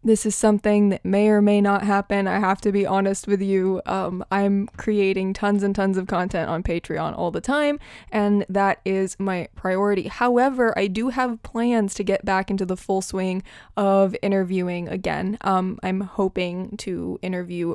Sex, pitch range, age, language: female, 195-225 Hz, 20-39, English